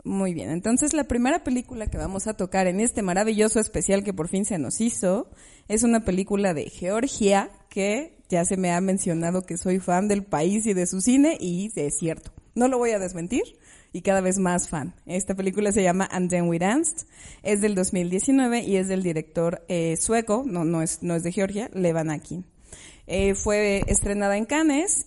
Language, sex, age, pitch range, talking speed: Spanish, female, 30-49, 175-210 Hz, 200 wpm